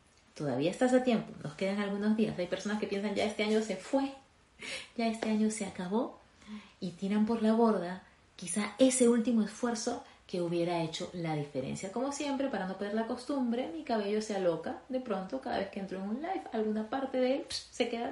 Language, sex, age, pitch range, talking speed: Spanish, female, 30-49, 160-215 Hz, 210 wpm